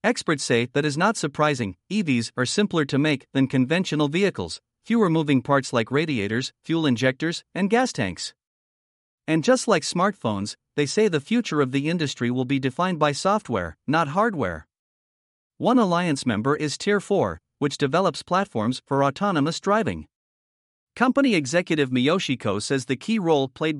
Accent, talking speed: American, 155 wpm